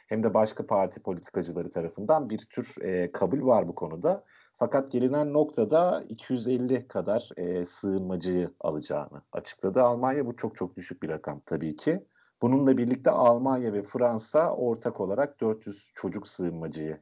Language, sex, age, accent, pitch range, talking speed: Turkish, male, 50-69, native, 90-125 Hz, 140 wpm